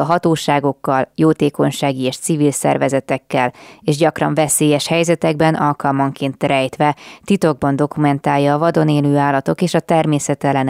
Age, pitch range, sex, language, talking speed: 20-39, 135-155 Hz, female, Hungarian, 110 wpm